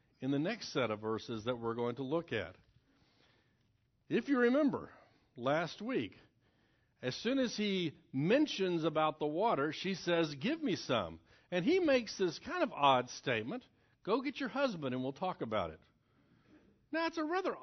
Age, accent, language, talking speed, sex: 60-79, American, English, 175 wpm, male